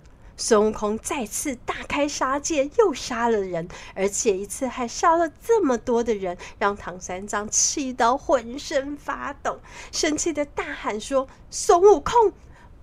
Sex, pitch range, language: female, 245-370 Hz, Chinese